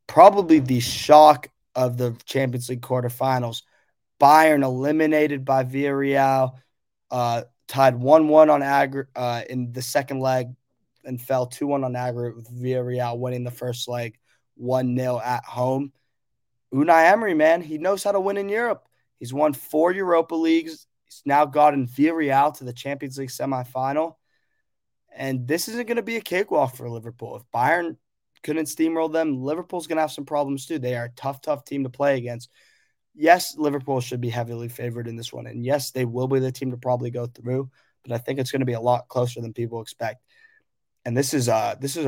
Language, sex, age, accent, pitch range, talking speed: English, male, 20-39, American, 120-145 Hz, 185 wpm